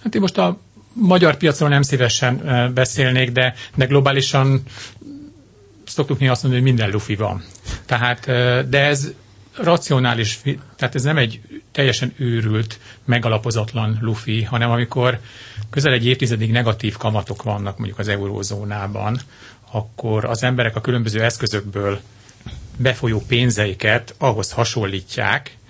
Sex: male